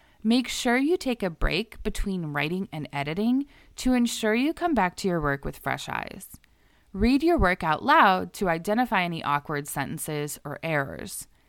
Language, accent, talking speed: English, American, 170 wpm